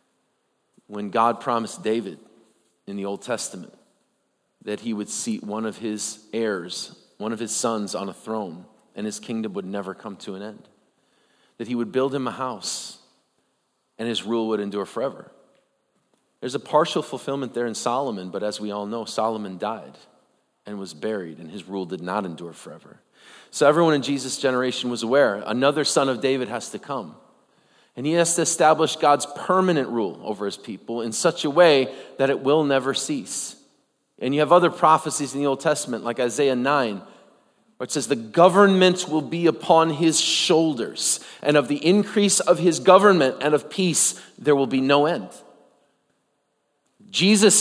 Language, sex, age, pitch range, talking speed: English, male, 40-59, 110-155 Hz, 180 wpm